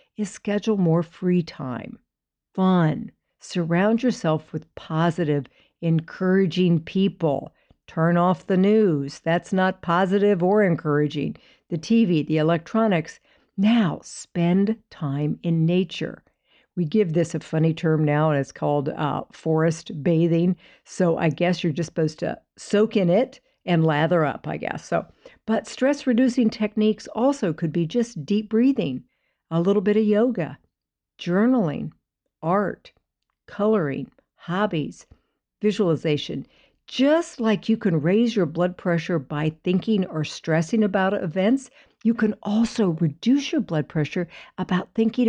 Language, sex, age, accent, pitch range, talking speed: English, female, 60-79, American, 160-215 Hz, 135 wpm